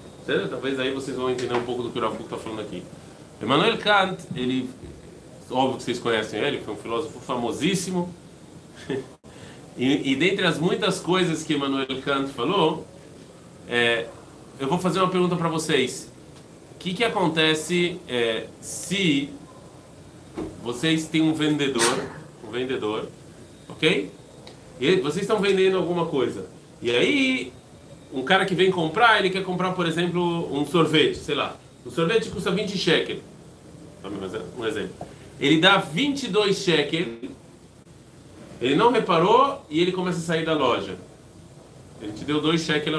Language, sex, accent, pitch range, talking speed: Portuguese, male, Brazilian, 140-195 Hz, 145 wpm